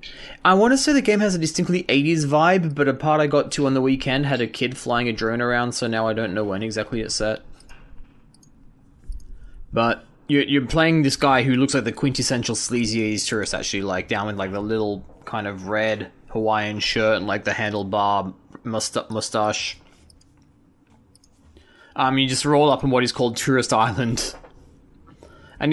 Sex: male